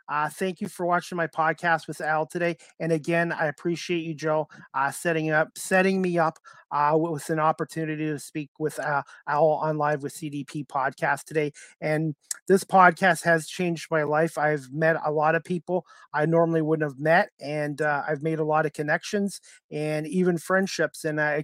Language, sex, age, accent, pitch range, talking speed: English, male, 30-49, American, 155-180 Hz, 190 wpm